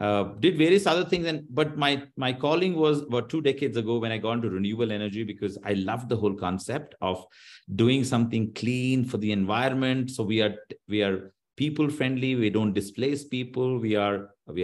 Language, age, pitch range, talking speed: English, 50-69, 110-145 Hz, 195 wpm